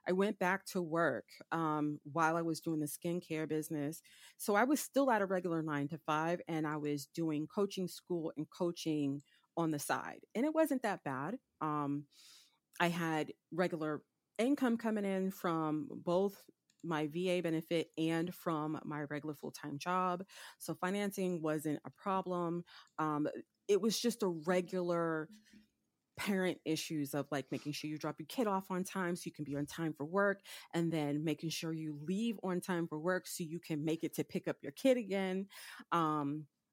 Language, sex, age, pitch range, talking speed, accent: English, female, 30-49, 155-190 Hz, 180 wpm, American